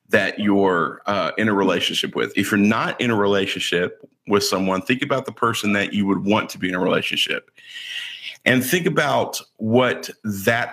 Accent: American